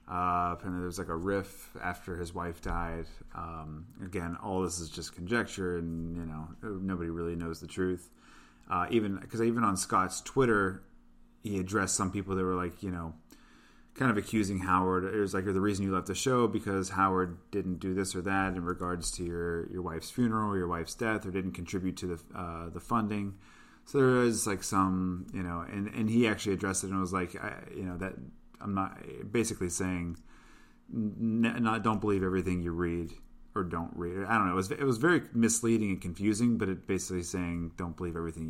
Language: English